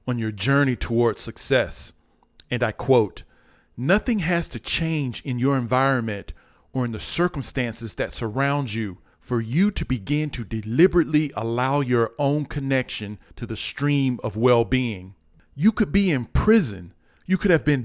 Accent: American